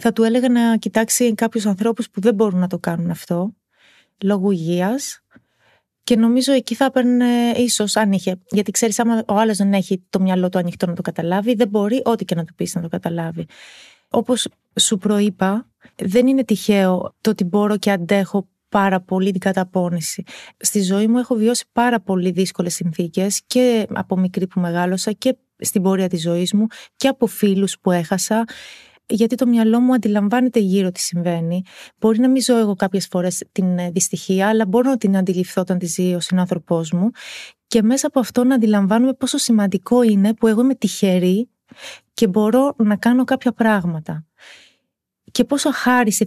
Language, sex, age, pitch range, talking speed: Greek, female, 30-49, 185-235 Hz, 180 wpm